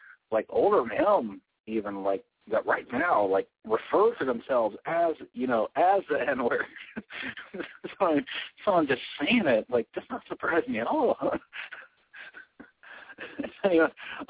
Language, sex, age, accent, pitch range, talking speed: English, male, 40-59, American, 110-185 Hz, 130 wpm